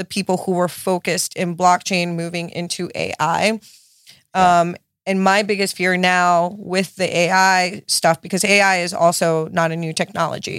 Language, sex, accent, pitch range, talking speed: English, female, American, 170-190 Hz, 160 wpm